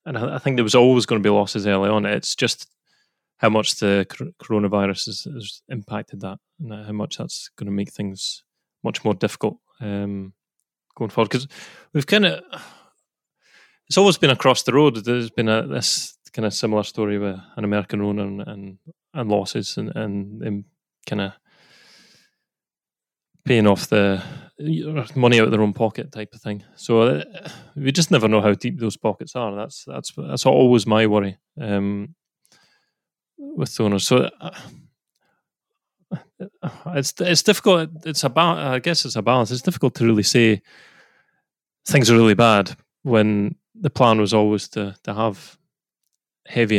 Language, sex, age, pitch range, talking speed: English, male, 20-39, 105-140 Hz, 165 wpm